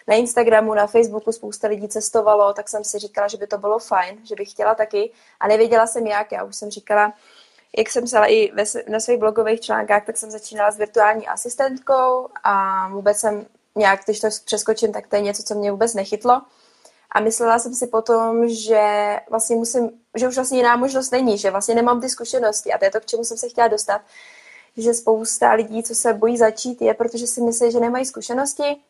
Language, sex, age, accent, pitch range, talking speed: Czech, female, 20-39, native, 210-235 Hz, 210 wpm